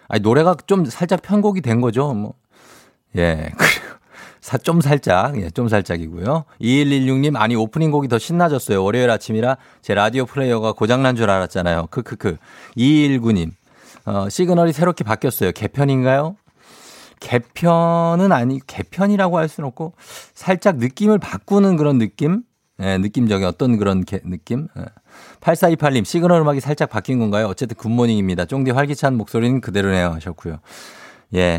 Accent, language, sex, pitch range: native, Korean, male, 105-160 Hz